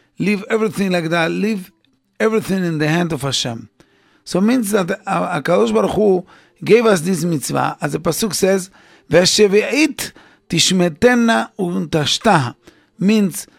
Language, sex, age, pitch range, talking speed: English, male, 50-69, 160-210 Hz, 125 wpm